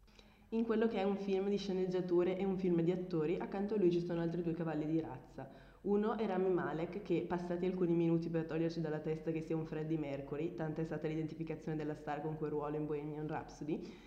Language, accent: Italian, native